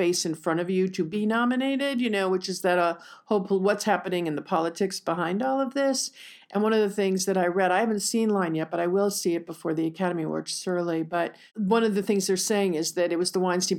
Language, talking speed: English, 265 wpm